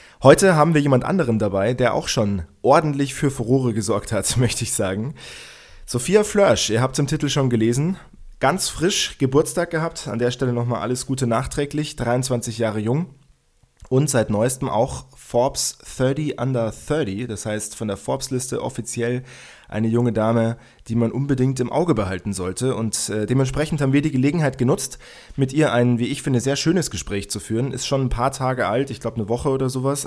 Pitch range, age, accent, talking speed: 110-135 Hz, 20-39, German, 190 wpm